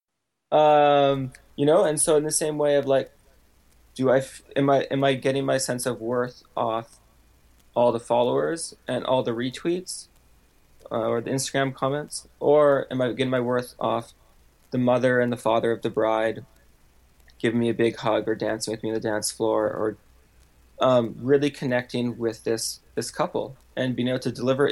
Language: English